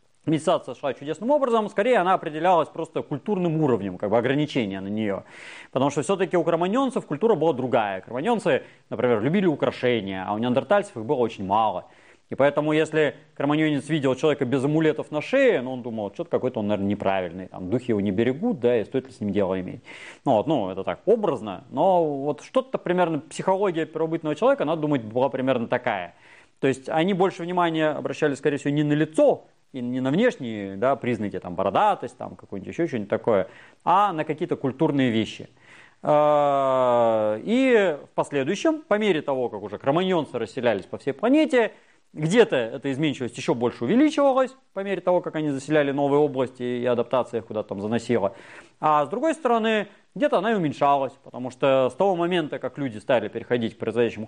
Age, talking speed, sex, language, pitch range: 30-49, 175 wpm, male, Russian, 125-180 Hz